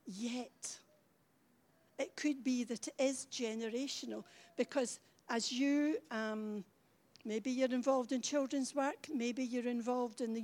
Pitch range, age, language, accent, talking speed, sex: 245-290 Hz, 60-79, English, British, 130 wpm, female